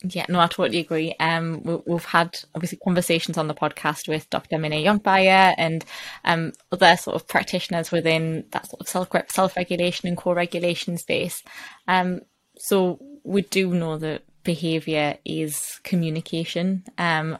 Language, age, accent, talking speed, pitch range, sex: English, 20-39, British, 145 wpm, 160-180 Hz, female